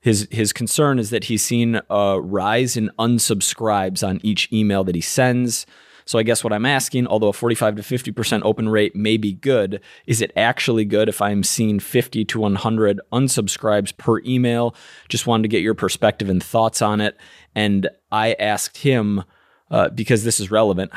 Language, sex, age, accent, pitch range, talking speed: English, male, 20-39, American, 100-120 Hz, 190 wpm